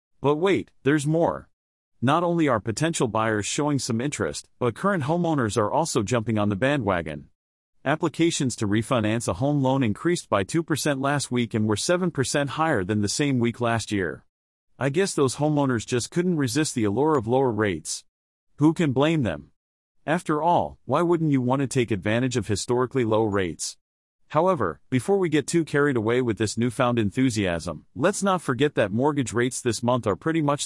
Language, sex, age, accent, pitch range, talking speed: English, male, 40-59, American, 110-150 Hz, 180 wpm